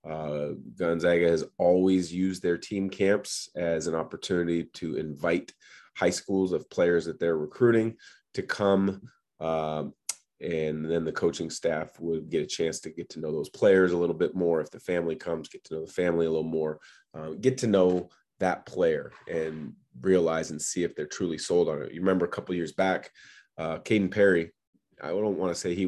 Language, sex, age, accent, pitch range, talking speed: English, male, 30-49, American, 80-95 Hz, 200 wpm